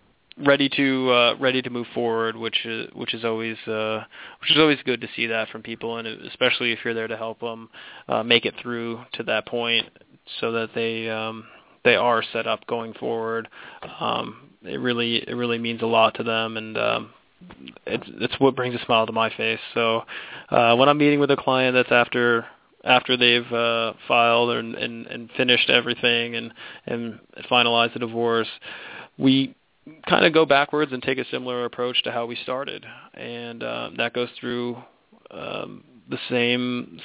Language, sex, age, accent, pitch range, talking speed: English, male, 20-39, American, 115-125 Hz, 185 wpm